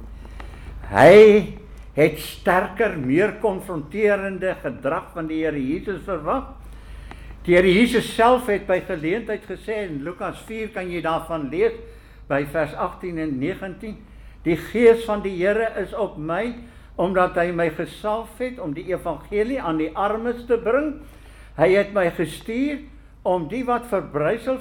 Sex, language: male, English